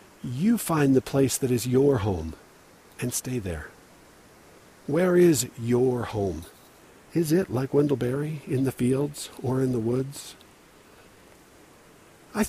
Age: 50-69